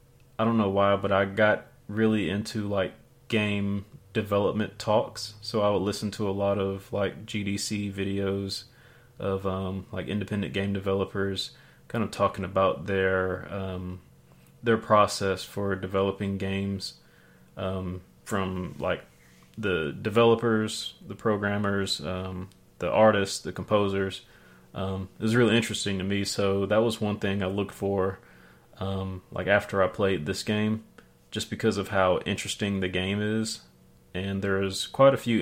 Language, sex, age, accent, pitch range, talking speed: English, male, 30-49, American, 95-110 Hz, 150 wpm